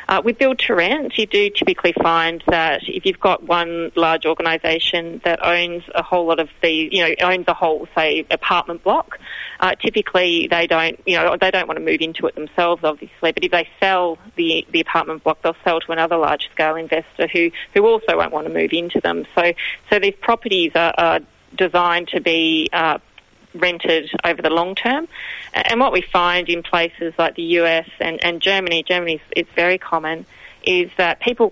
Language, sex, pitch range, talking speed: English, female, 165-180 Hz, 200 wpm